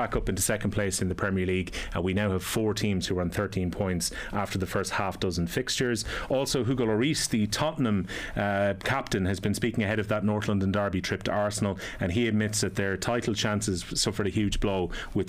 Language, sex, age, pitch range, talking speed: English, male, 30-49, 95-115 Hz, 225 wpm